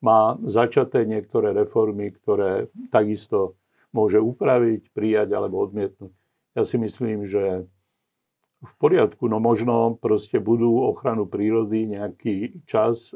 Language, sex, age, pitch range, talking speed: Slovak, male, 50-69, 105-125 Hz, 115 wpm